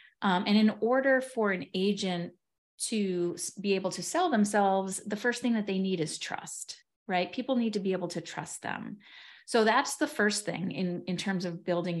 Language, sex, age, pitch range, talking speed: English, female, 30-49, 180-235 Hz, 200 wpm